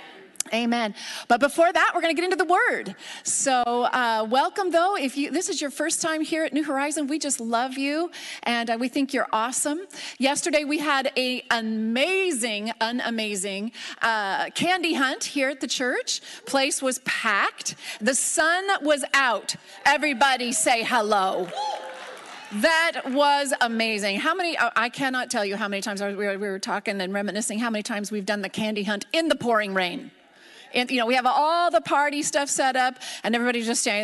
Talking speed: 180 wpm